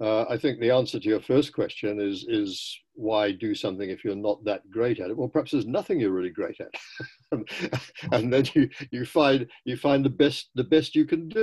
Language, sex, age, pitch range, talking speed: English, male, 60-79, 110-175 Hz, 230 wpm